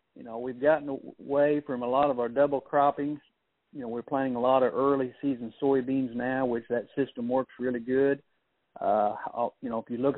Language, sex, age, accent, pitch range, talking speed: English, male, 50-69, American, 115-135 Hz, 205 wpm